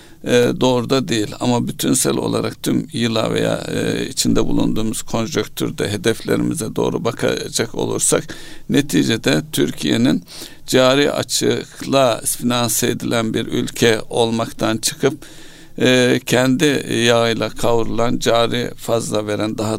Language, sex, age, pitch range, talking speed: Turkish, male, 60-79, 110-130 Hz, 110 wpm